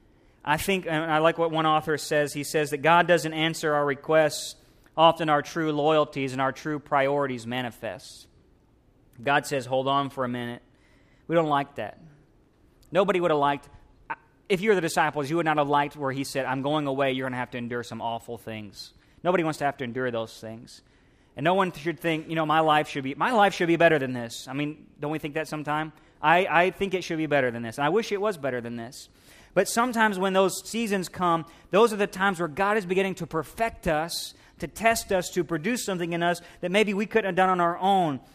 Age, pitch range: 40-59, 140-190 Hz